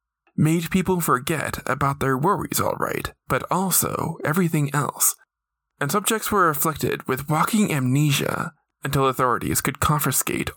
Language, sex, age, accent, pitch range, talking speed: English, male, 20-39, American, 130-170 Hz, 125 wpm